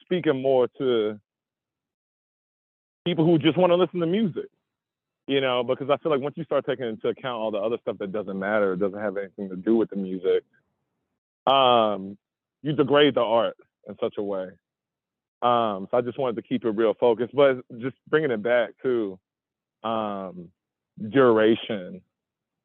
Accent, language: American, English